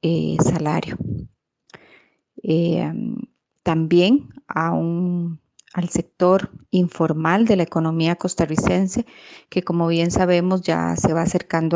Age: 30-49